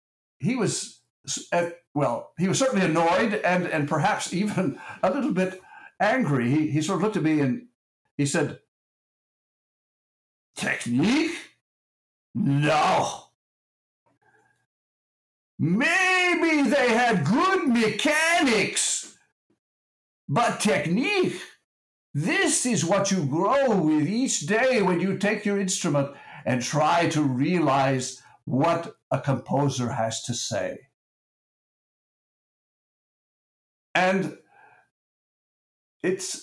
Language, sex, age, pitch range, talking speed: English, male, 60-79, 135-200 Hz, 95 wpm